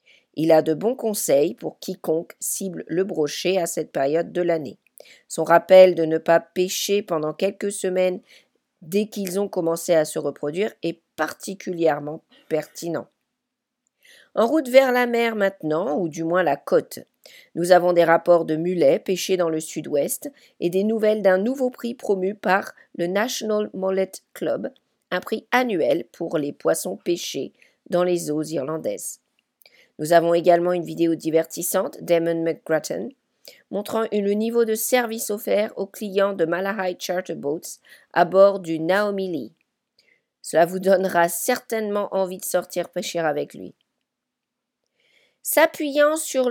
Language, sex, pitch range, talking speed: English, female, 170-220 Hz, 150 wpm